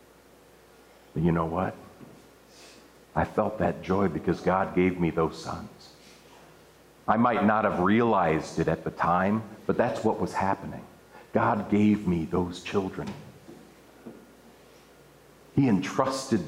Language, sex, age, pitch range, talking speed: English, male, 50-69, 90-115 Hz, 125 wpm